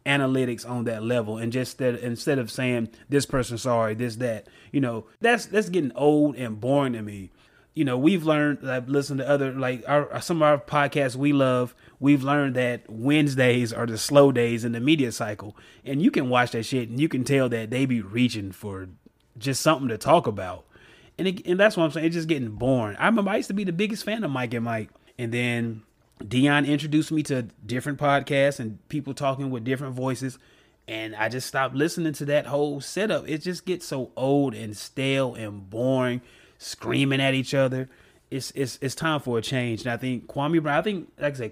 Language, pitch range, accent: English, 120-145 Hz, American